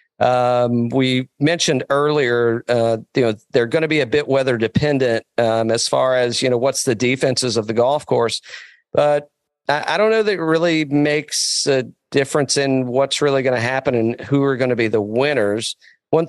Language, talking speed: English, 200 wpm